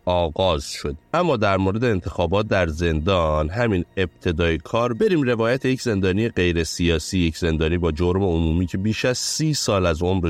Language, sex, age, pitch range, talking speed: Persian, male, 30-49, 80-100 Hz, 170 wpm